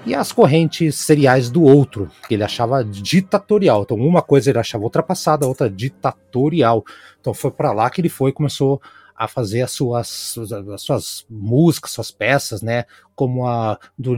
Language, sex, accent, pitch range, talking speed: Portuguese, male, Brazilian, 120-170 Hz, 175 wpm